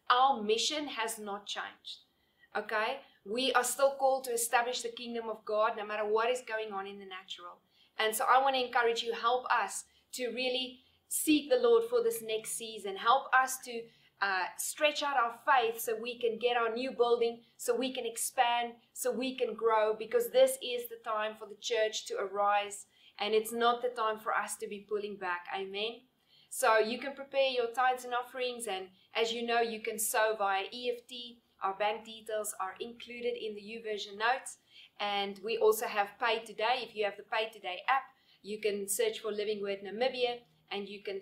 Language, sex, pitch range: English, female, 210-245 Hz